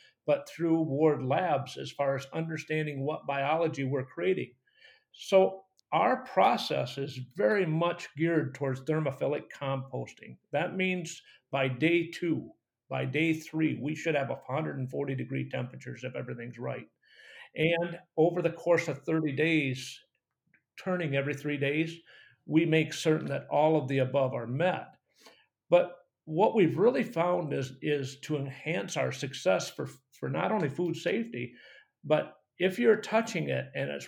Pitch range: 145-180 Hz